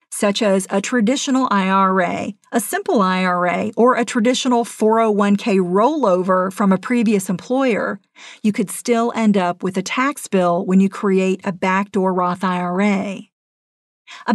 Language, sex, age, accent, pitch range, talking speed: English, female, 50-69, American, 190-245 Hz, 140 wpm